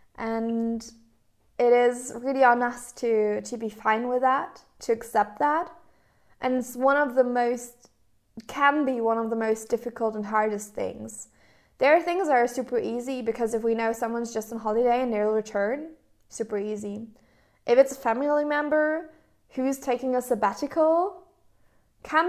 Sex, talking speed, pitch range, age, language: female, 165 wpm, 210-250 Hz, 20-39, English